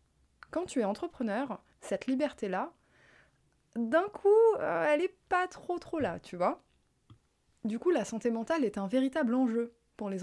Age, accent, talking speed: 20-39, French, 165 wpm